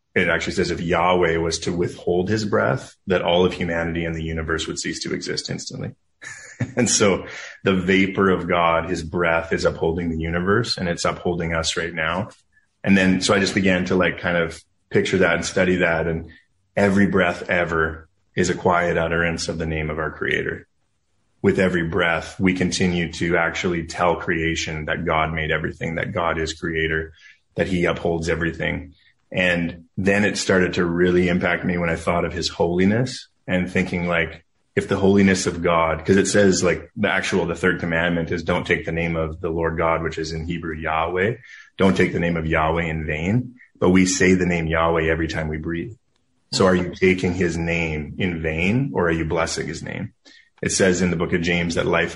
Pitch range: 80-90 Hz